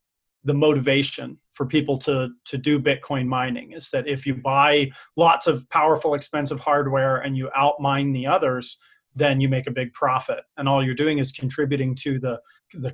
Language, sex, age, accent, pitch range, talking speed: English, male, 40-59, American, 135-155 Hz, 180 wpm